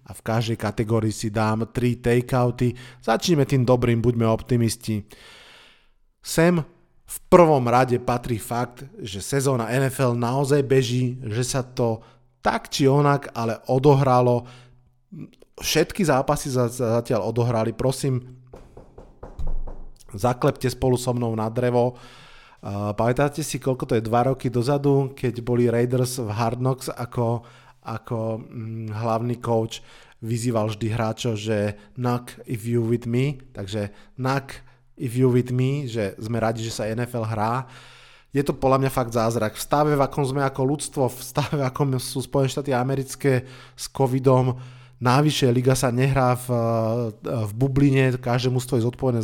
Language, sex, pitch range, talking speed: Slovak, male, 115-135 Hz, 145 wpm